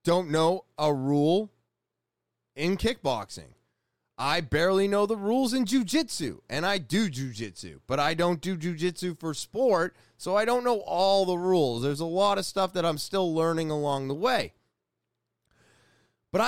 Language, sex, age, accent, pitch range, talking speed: English, male, 30-49, American, 150-230 Hz, 160 wpm